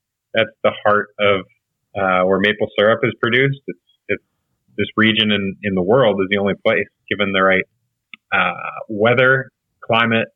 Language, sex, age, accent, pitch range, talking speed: Danish, male, 30-49, American, 100-115 Hz, 160 wpm